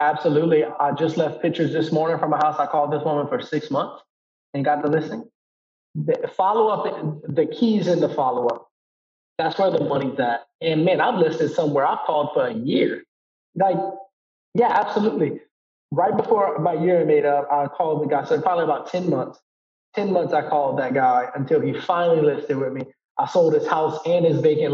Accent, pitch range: American, 150-205 Hz